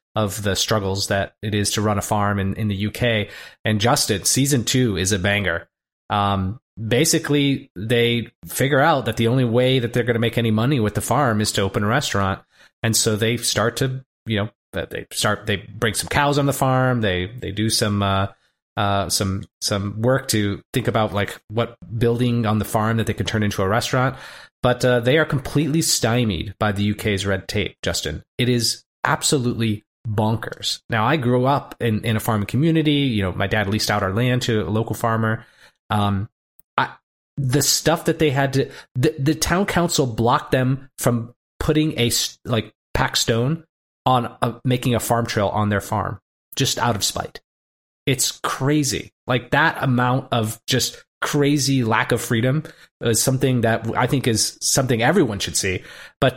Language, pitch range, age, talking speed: English, 105-130 Hz, 30-49, 190 wpm